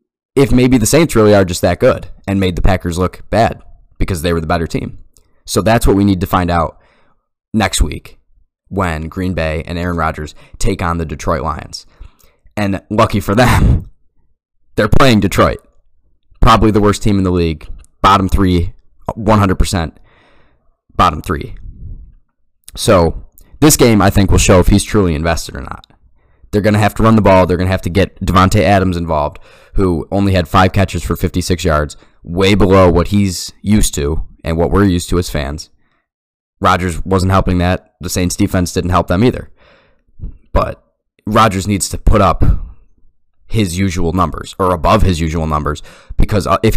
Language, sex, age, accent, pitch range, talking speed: English, male, 20-39, American, 85-105 Hz, 175 wpm